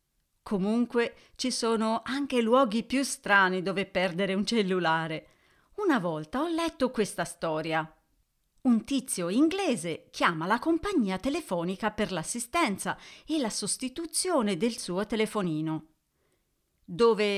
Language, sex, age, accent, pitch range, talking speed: Italian, female, 40-59, native, 180-255 Hz, 115 wpm